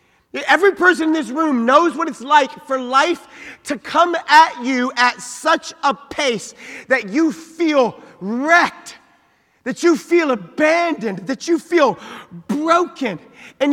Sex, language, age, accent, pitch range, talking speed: male, English, 40-59, American, 195-285 Hz, 140 wpm